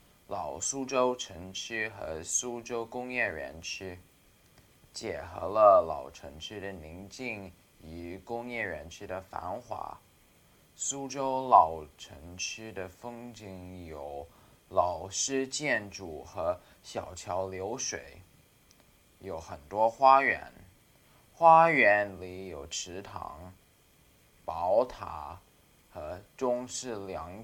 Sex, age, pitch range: male, 20-39, 95-135 Hz